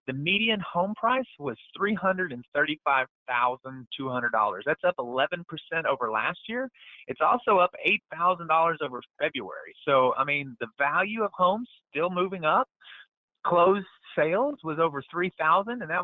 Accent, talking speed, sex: American, 130 wpm, male